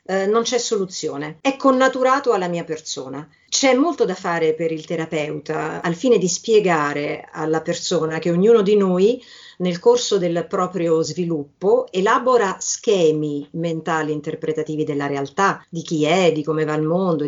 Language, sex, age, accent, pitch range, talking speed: Italian, female, 50-69, native, 160-210 Hz, 155 wpm